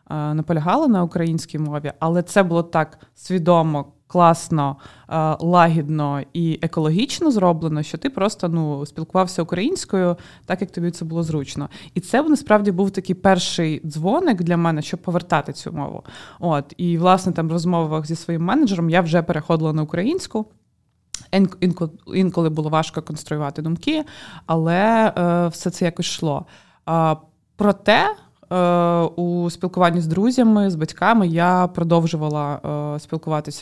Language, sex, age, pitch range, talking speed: Ukrainian, female, 20-39, 155-185 Hz, 130 wpm